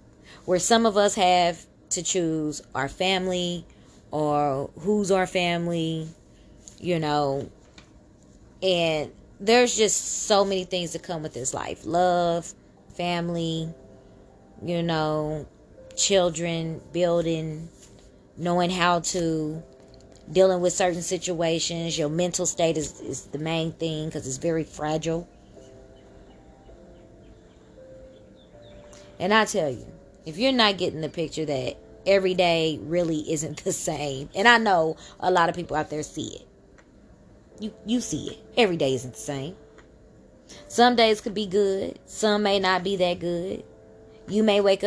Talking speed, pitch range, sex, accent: 135 wpm, 150-190 Hz, female, American